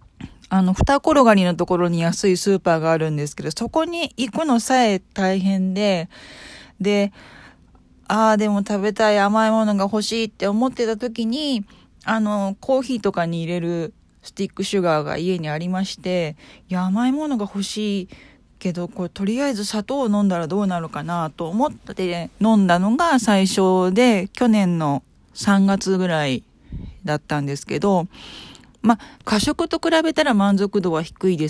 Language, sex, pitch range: Japanese, female, 175-230 Hz